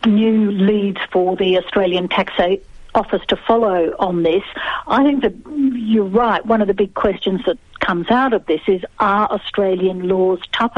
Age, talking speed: 60-79, 175 wpm